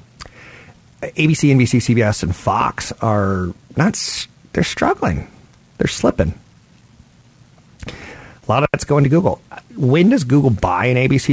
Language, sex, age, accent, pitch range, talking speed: English, male, 40-59, American, 100-130 Hz, 125 wpm